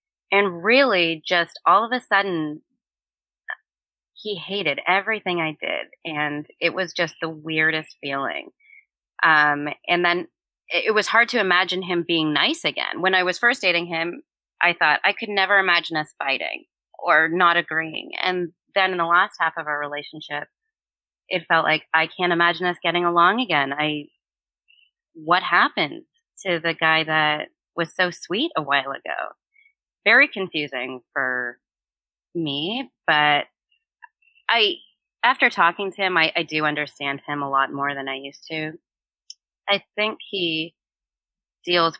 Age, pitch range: 30-49, 150-190 Hz